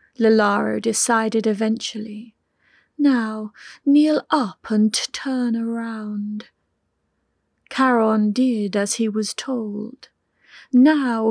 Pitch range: 215-255 Hz